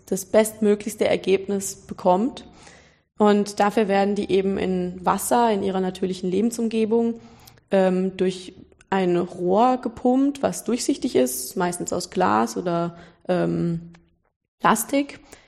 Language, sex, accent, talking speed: German, female, German, 110 wpm